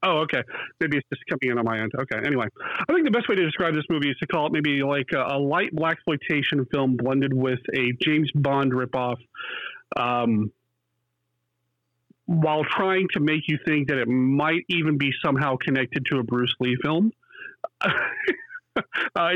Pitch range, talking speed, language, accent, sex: 120-165 Hz, 185 wpm, English, American, male